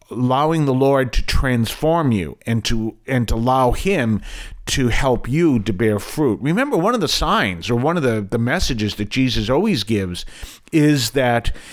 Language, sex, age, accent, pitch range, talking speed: English, male, 50-69, American, 105-130 Hz, 180 wpm